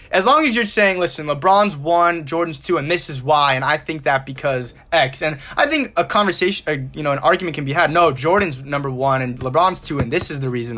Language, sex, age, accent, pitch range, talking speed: English, male, 20-39, American, 135-170 Hz, 250 wpm